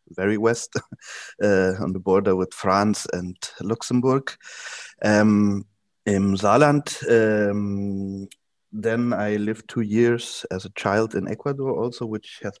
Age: 30-49